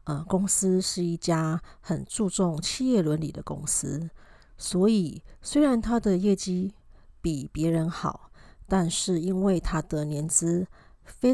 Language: Chinese